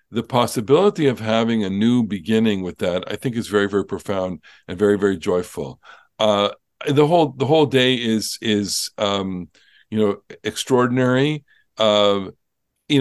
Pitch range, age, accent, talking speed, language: 105-135 Hz, 50-69, American, 150 wpm, English